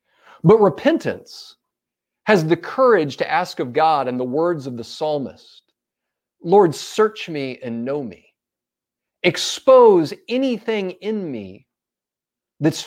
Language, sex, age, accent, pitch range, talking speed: English, male, 40-59, American, 135-205 Hz, 120 wpm